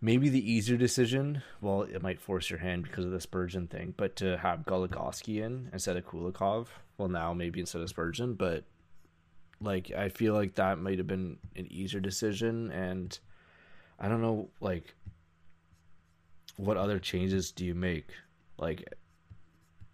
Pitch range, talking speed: 85-100 Hz, 160 wpm